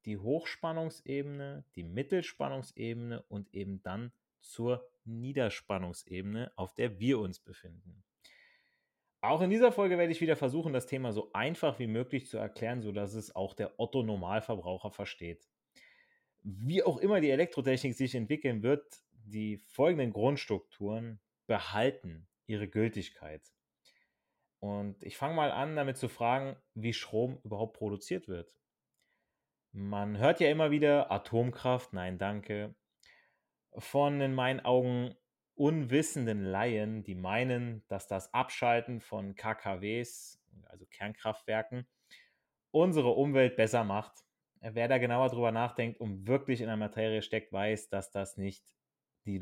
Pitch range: 100-135 Hz